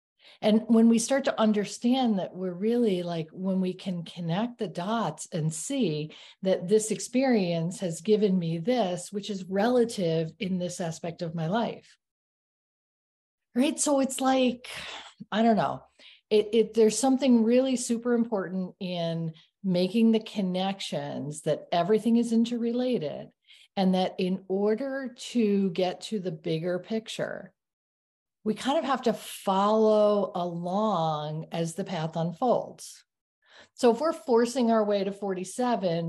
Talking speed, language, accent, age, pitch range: 140 wpm, English, American, 40-59, 175-230 Hz